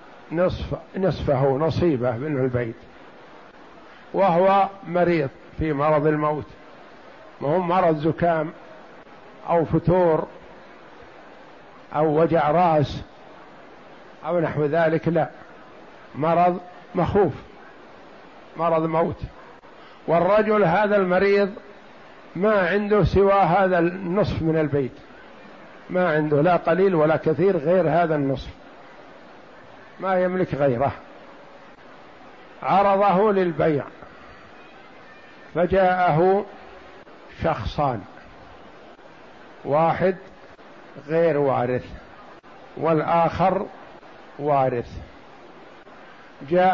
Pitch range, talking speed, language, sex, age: 150-180 Hz, 75 wpm, Arabic, male, 60-79